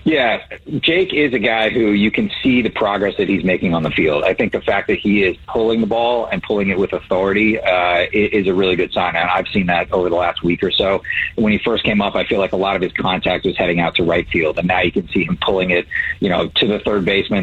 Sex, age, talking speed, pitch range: male, 40-59, 280 wpm, 90-115 Hz